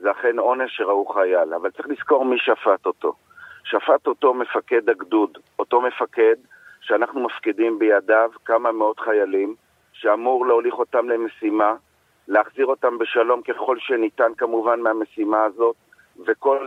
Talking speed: 130 wpm